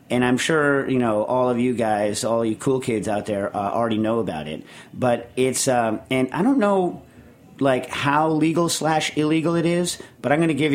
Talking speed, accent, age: 220 wpm, American, 40-59